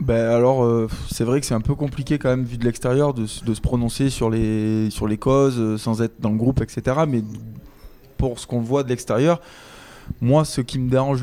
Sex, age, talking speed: male, 20-39, 225 wpm